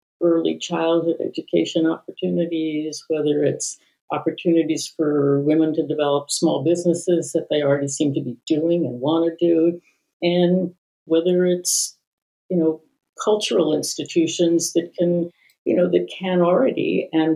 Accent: American